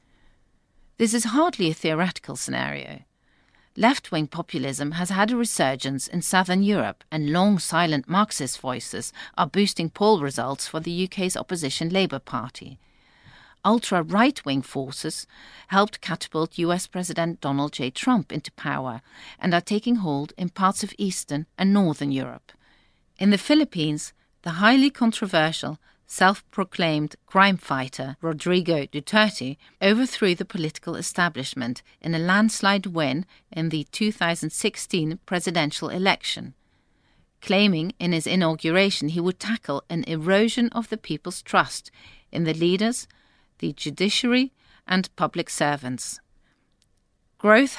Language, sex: English, female